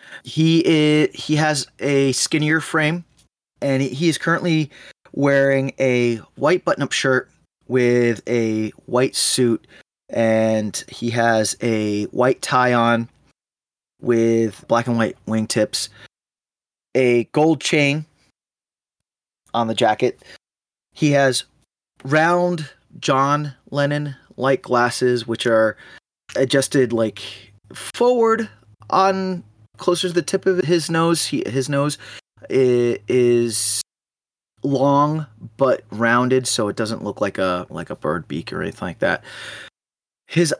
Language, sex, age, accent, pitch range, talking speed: English, male, 20-39, American, 110-145 Hz, 120 wpm